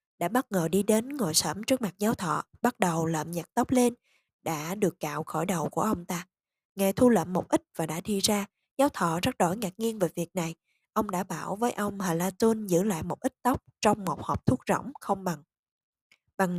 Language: Vietnamese